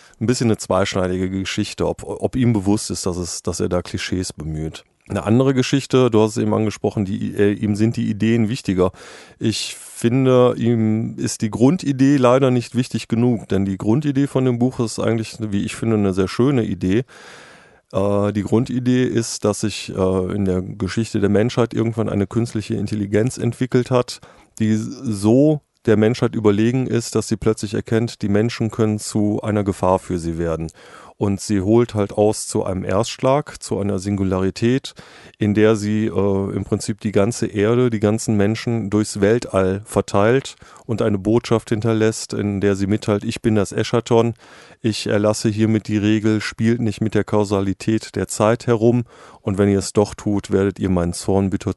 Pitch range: 100-120 Hz